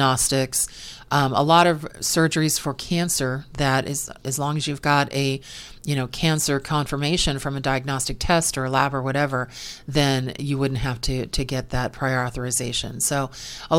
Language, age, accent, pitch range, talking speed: English, 40-59, American, 135-165 Hz, 180 wpm